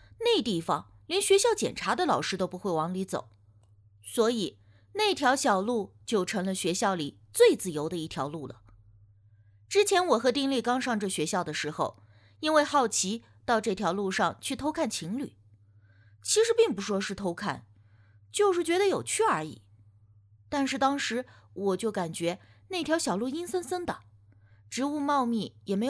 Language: Chinese